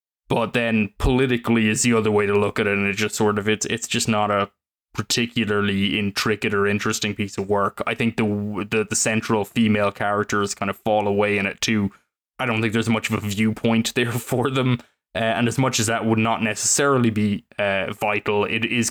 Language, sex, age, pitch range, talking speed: English, male, 20-39, 105-115 Hz, 215 wpm